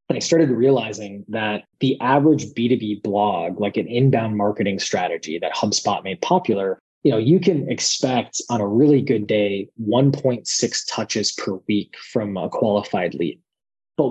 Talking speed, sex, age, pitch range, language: 155 wpm, male, 20-39, 105-135 Hz, English